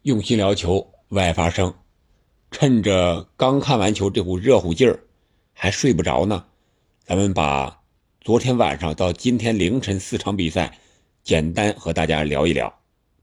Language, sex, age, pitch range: Chinese, male, 50-69, 85-115 Hz